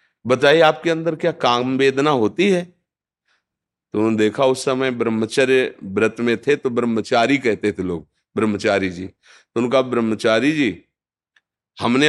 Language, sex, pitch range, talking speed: Hindi, male, 110-140 Hz, 130 wpm